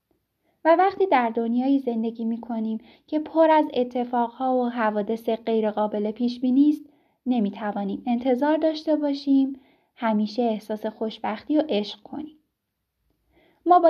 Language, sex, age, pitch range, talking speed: Persian, female, 10-29, 225-295 Hz, 120 wpm